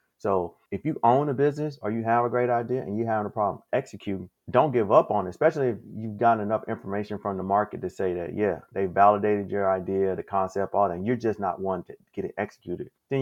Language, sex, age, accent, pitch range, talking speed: English, male, 30-49, American, 95-110 Hz, 245 wpm